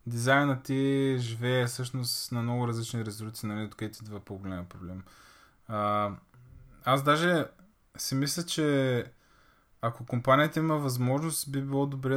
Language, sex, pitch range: Bulgarian, male, 115-145 Hz